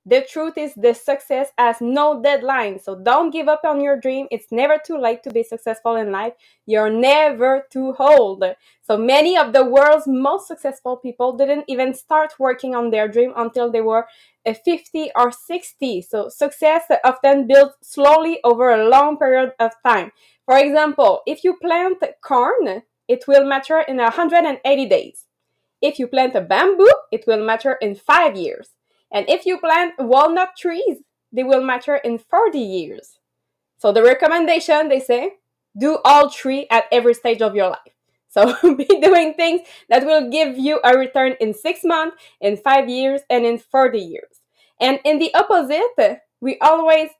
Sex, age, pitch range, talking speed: female, 20-39, 240-315 Hz, 170 wpm